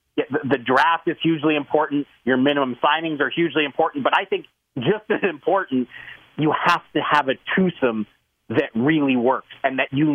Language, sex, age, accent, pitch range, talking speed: English, male, 40-59, American, 125-155 Hz, 170 wpm